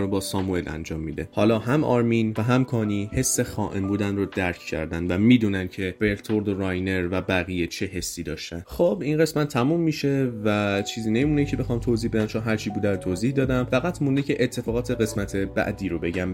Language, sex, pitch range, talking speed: Persian, male, 100-130 Hz, 195 wpm